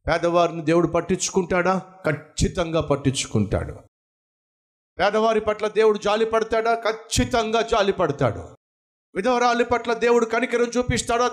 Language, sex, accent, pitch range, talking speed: Telugu, male, native, 145-215 Hz, 95 wpm